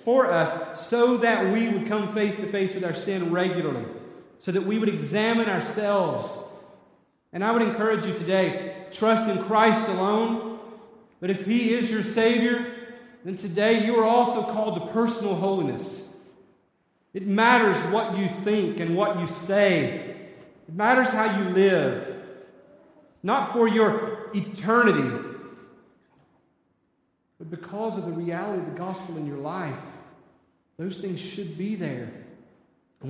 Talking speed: 145 wpm